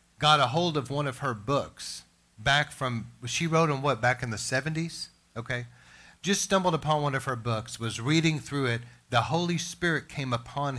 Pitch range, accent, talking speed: 120-155 Hz, American, 195 wpm